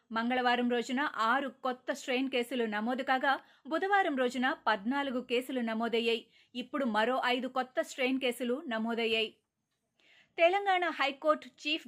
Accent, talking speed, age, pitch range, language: native, 75 wpm, 20-39, 235-275 Hz, Telugu